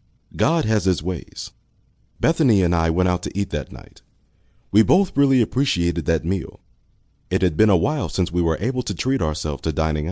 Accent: American